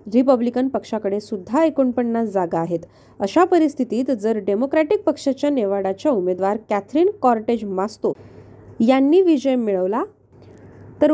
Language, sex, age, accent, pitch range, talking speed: Marathi, female, 20-39, native, 205-290 Hz, 110 wpm